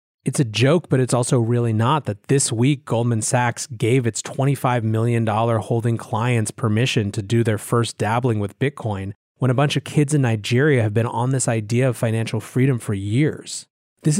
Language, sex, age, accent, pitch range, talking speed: English, male, 30-49, American, 115-135 Hz, 190 wpm